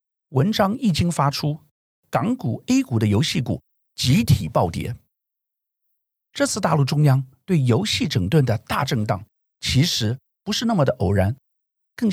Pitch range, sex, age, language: 115-180 Hz, male, 50-69, Chinese